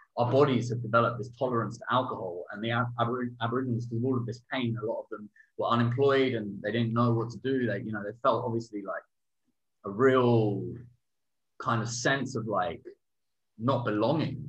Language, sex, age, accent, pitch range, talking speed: English, male, 20-39, British, 115-140 Hz, 200 wpm